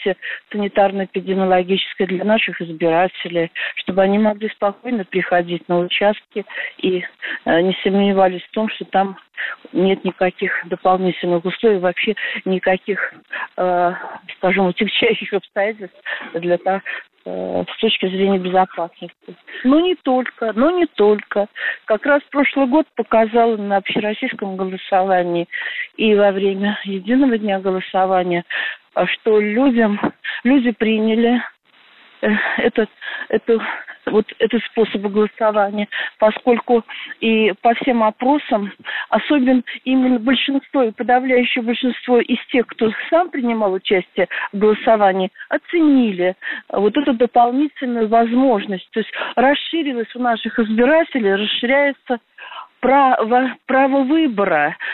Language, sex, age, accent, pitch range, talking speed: Russian, female, 40-59, native, 190-250 Hz, 110 wpm